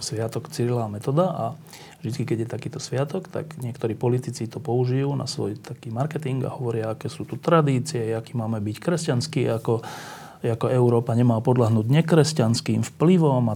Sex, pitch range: male, 115-155 Hz